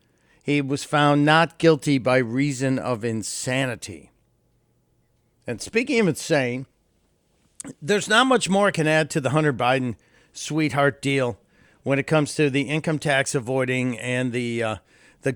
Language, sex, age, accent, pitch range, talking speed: English, male, 50-69, American, 125-155 Hz, 150 wpm